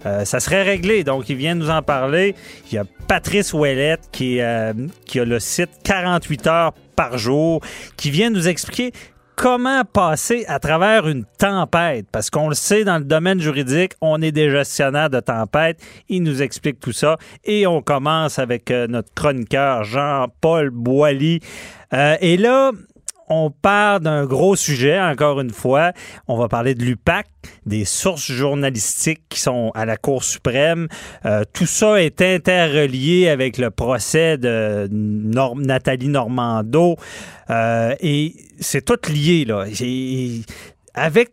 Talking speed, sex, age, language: 155 wpm, male, 30-49, French